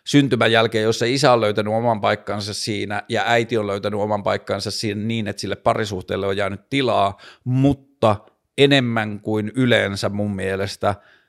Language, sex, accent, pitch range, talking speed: Finnish, male, native, 105-125 Hz, 155 wpm